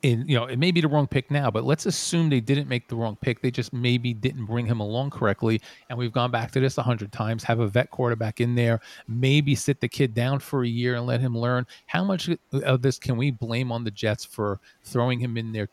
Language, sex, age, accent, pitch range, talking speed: English, male, 40-59, American, 110-135 Hz, 265 wpm